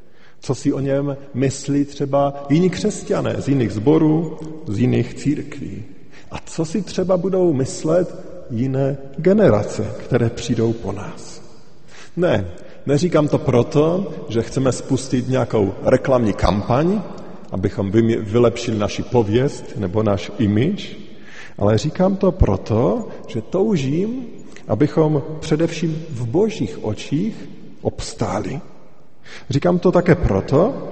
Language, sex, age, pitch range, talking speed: Slovak, male, 40-59, 120-165 Hz, 115 wpm